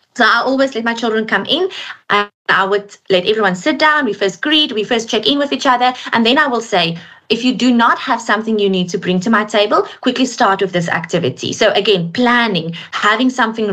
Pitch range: 190-245 Hz